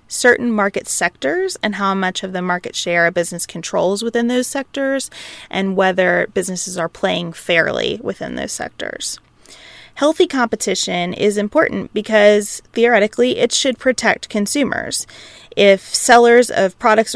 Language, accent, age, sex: English, American, 20-39, female